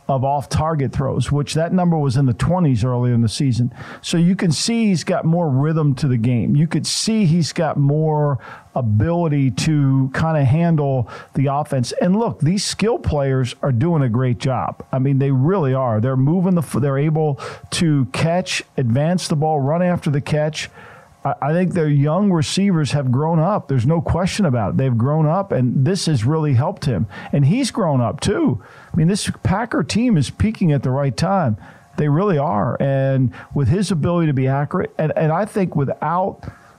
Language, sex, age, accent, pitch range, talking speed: English, male, 50-69, American, 135-170 Hz, 195 wpm